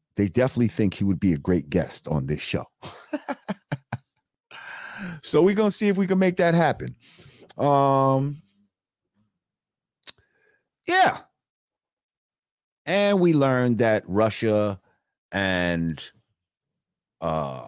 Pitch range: 90-150 Hz